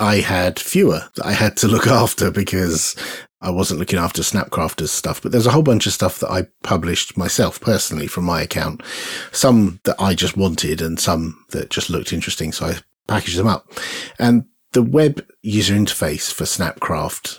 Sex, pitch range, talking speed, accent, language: male, 90-115 Hz, 185 wpm, British, English